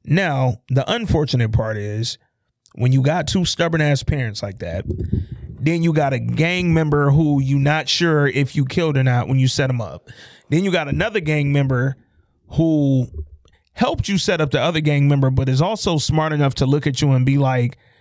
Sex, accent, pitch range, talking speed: male, American, 120-155 Hz, 205 wpm